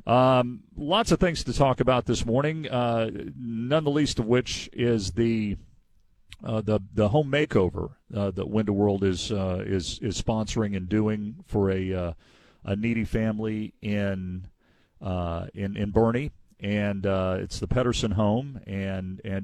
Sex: male